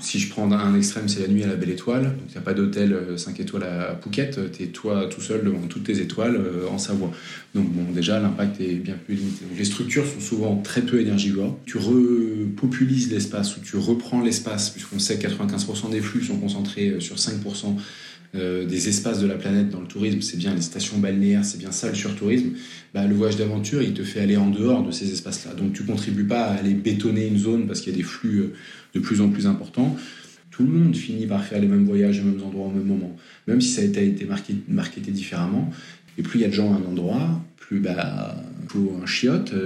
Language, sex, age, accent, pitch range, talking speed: French, male, 20-39, French, 100-125 Hz, 240 wpm